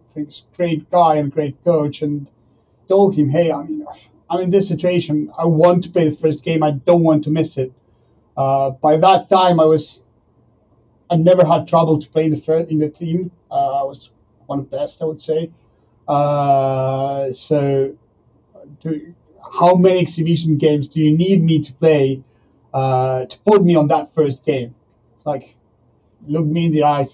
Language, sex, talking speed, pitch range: English, male, 185 wpm, 135-170 Hz